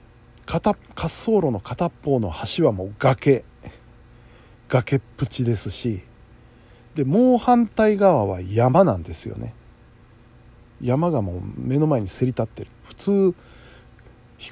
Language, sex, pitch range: Japanese, male, 115-140 Hz